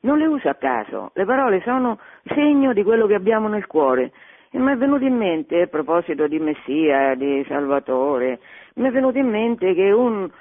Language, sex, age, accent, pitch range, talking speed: Italian, female, 50-69, native, 160-240 Hz, 195 wpm